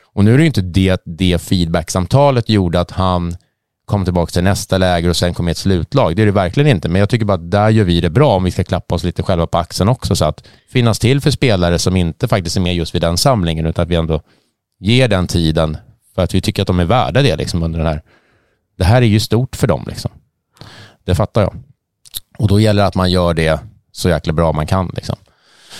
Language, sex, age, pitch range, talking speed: Swedish, male, 30-49, 85-110 Hz, 245 wpm